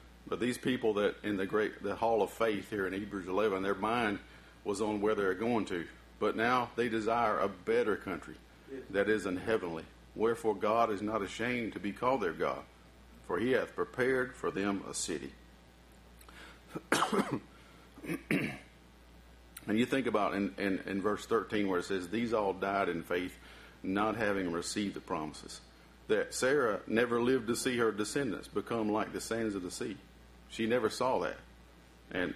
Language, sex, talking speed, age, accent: English, male, 175 wpm, 50-69, American